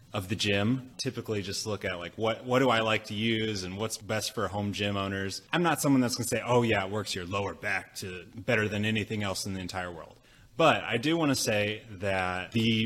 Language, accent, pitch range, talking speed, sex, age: English, American, 100-125 Hz, 245 wpm, male, 30-49